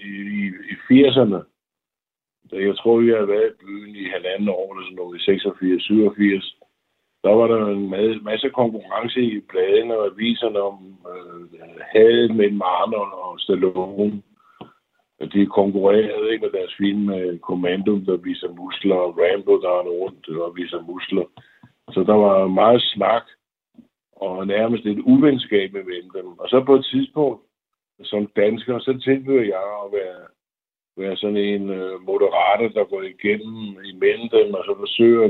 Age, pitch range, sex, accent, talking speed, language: 60-79, 100-130 Hz, male, native, 150 wpm, Danish